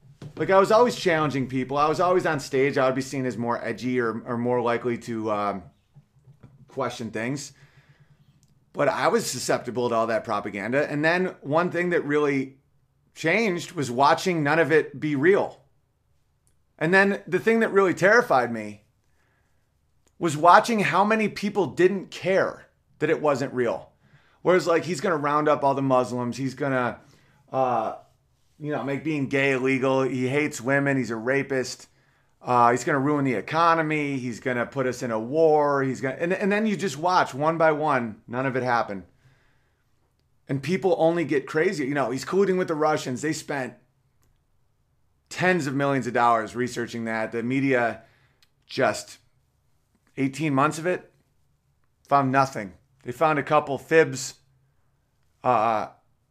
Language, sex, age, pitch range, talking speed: English, male, 30-49, 125-155 Hz, 170 wpm